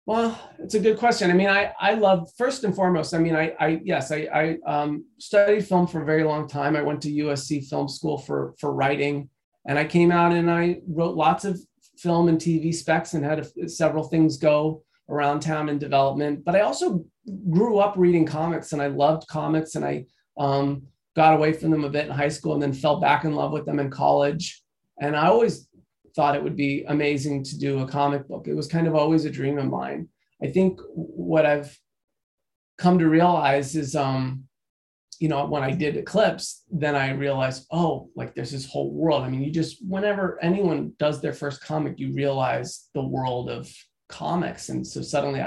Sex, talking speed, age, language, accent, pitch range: male, 210 wpm, 30-49, English, American, 145-170 Hz